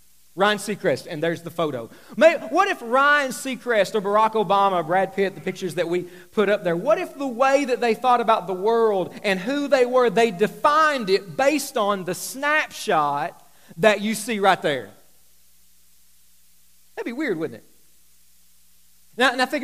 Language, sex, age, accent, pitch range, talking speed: English, male, 40-59, American, 155-245 Hz, 175 wpm